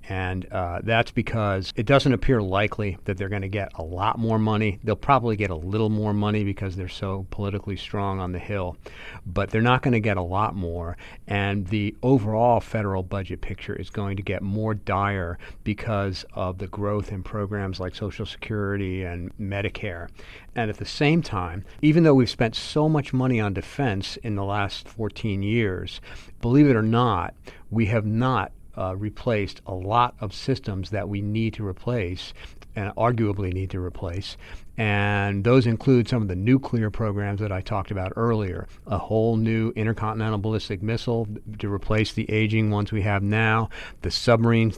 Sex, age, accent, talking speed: male, 50-69, American, 180 wpm